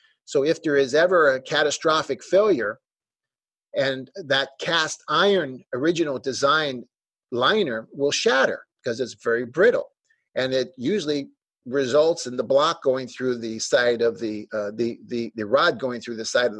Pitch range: 125-165 Hz